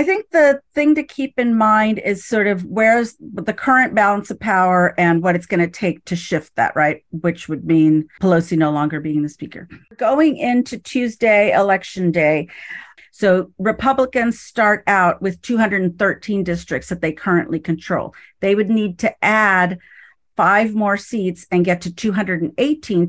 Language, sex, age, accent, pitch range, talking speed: English, female, 40-59, American, 165-215 Hz, 165 wpm